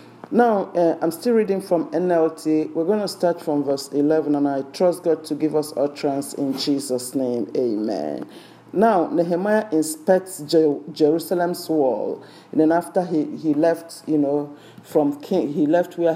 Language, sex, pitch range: English, male, 150-180 Hz